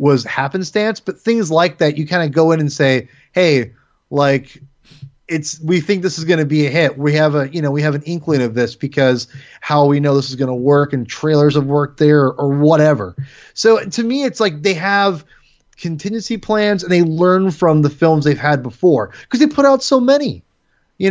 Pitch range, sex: 150-235 Hz, male